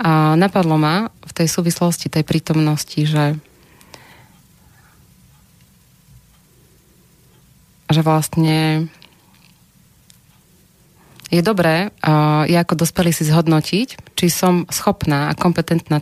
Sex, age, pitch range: female, 30-49, 145-165 Hz